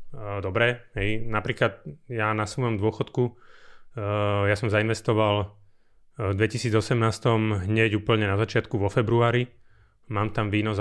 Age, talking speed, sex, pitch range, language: 30-49, 115 wpm, male, 100-120 Hz, Slovak